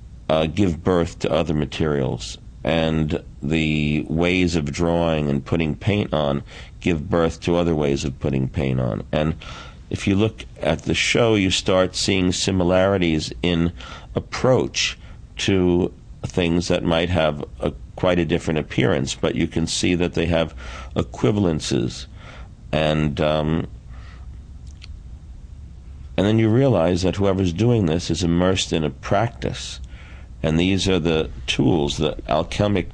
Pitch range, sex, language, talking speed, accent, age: 75-95 Hz, male, English, 140 wpm, American, 50-69